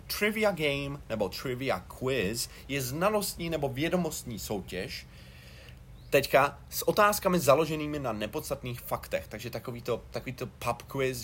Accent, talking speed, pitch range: native, 125 wpm, 90-125 Hz